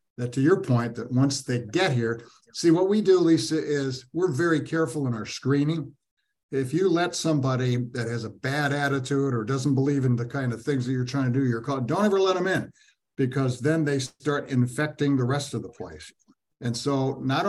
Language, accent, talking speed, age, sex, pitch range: English, American, 215 wpm, 60-79, male, 120-155 Hz